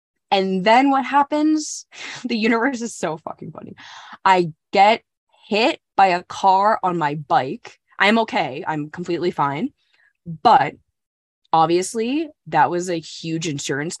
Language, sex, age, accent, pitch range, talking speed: English, female, 20-39, American, 150-215 Hz, 135 wpm